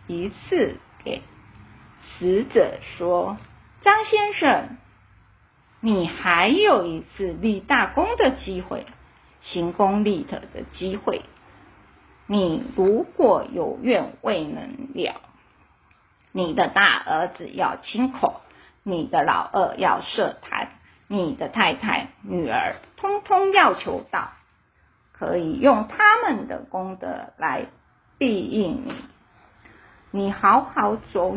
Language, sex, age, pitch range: Chinese, female, 30-49, 195-320 Hz